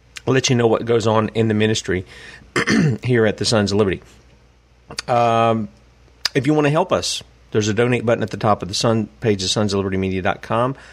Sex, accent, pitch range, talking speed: male, American, 105-125 Hz, 200 wpm